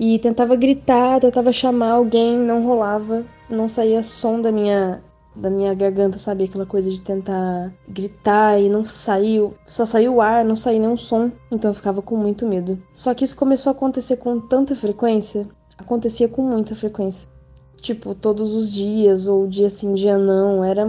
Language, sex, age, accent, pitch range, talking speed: Portuguese, female, 10-29, Brazilian, 205-255 Hz, 180 wpm